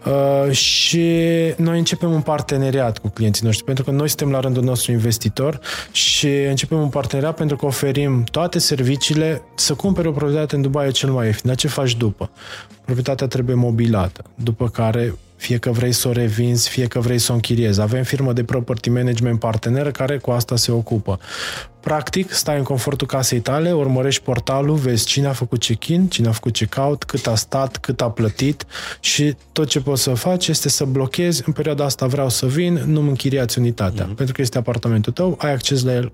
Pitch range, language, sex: 115-140 Hz, Romanian, male